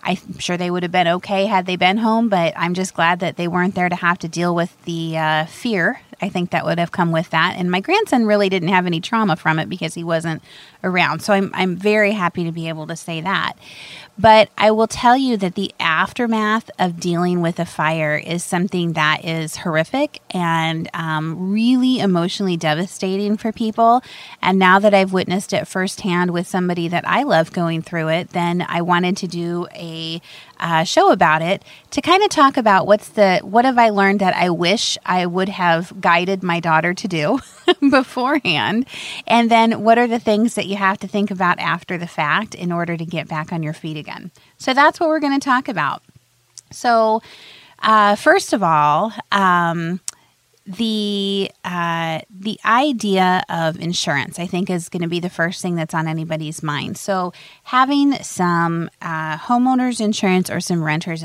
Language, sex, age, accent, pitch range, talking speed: English, female, 30-49, American, 165-210 Hz, 195 wpm